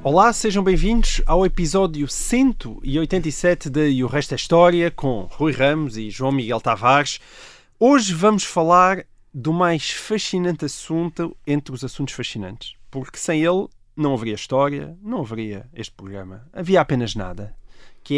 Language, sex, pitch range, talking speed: Portuguese, male, 130-175 Hz, 145 wpm